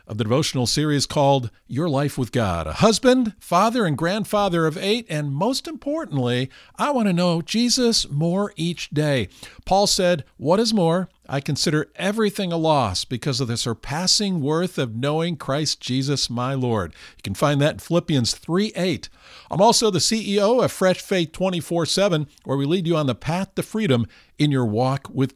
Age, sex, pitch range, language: 50-69, male, 130-185 Hz, English